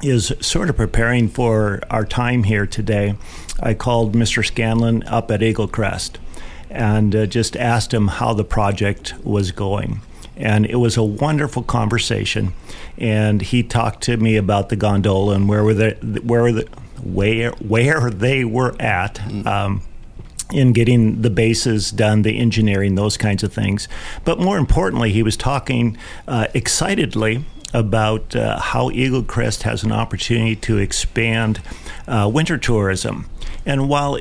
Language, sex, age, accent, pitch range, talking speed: English, male, 50-69, American, 105-120 Hz, 155 wpm